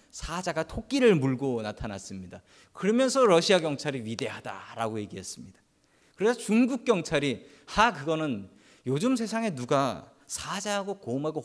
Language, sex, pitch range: Korean, male, 130-215 Hz